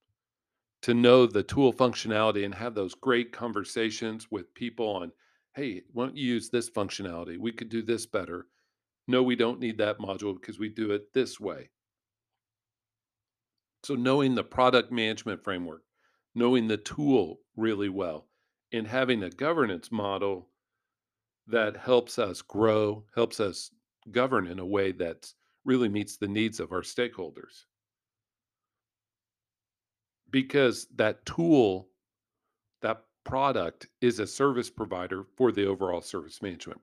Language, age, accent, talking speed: English, 50-69, American, 140 wpm